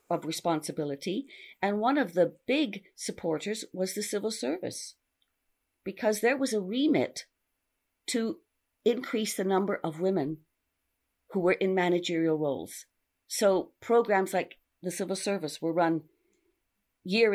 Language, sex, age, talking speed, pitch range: English, female, 50-69, 130 wpm, 165-215 Hz